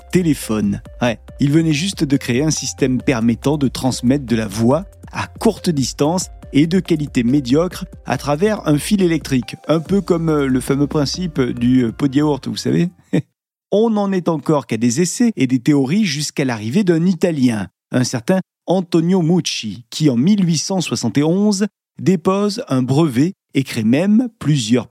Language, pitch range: French, 130-185 Hz